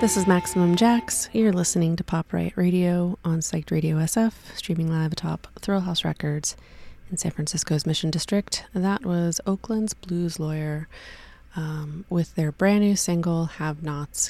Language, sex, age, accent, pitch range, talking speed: English, female, 20-39, American, 155-180 Hz, 160 wpm